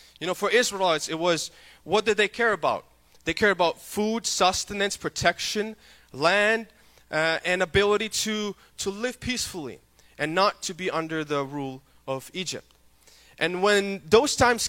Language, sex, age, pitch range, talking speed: English, male, 20-39, 140-195 Hz, 155 wpm